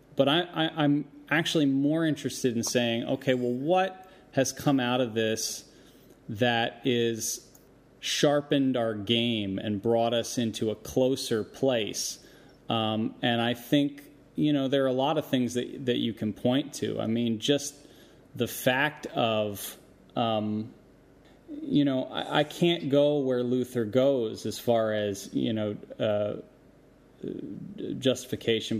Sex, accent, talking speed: male, American, 140 wpm